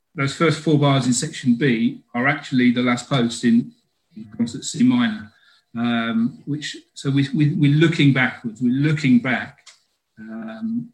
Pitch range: 125-150 Hz